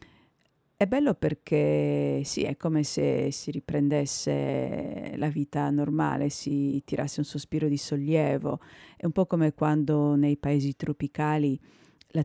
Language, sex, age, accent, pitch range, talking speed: Italian, female, 50-69, native, 145-155 Hz, 130 wpm